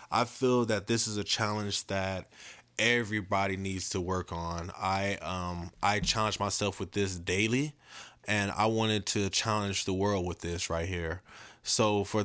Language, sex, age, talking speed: English, male, 20-39, 165 wpm